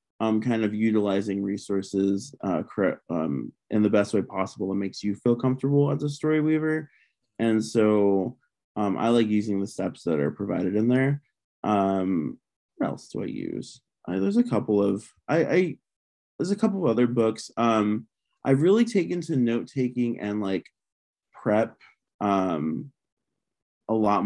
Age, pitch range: 20-39, 100-120 Hz